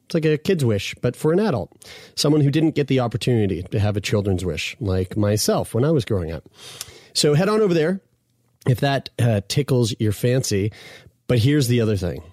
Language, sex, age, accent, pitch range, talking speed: English, male, 30-49, American, 110-140 Hz, 205 wpm